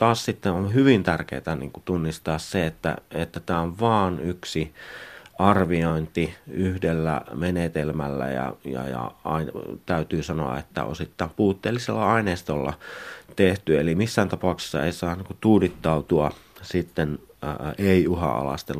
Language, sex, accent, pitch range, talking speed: Finnish, male, native, 80-100 Hz, 125 wpm